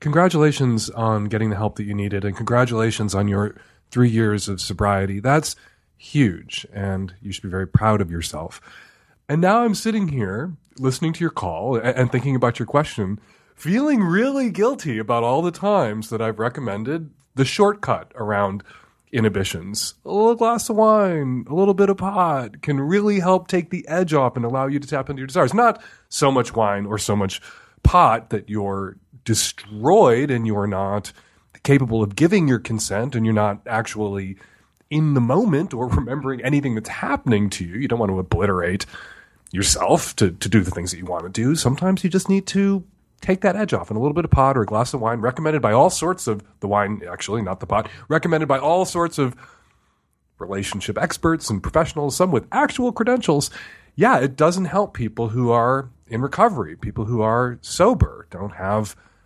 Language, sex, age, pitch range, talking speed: English, male, 30-49, 105-160 Hz, 190 wpm